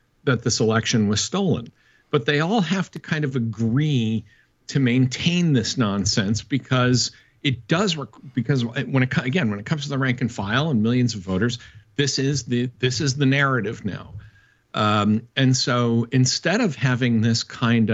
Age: 50-69